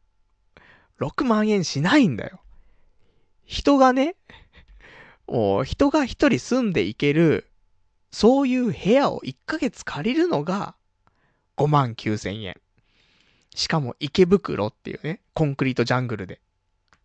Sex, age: male, 20-39